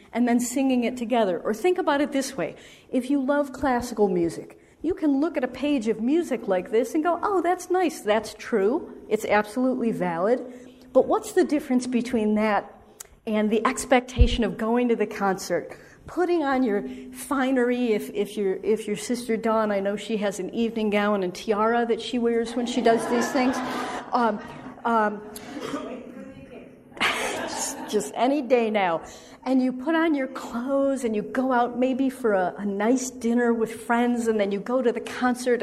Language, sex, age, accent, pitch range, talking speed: English, female, 50-69, American, 220-260 Hz, 185 wpm